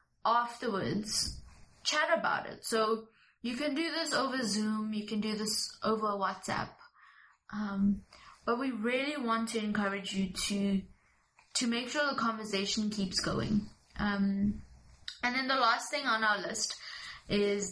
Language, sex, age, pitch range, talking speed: English, female, 20-39, 200-245 Hz, 145 wpm